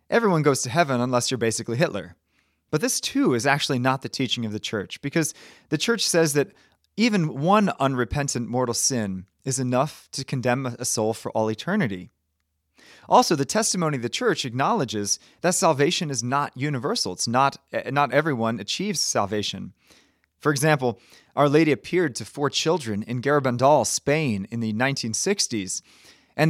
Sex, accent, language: male, American, English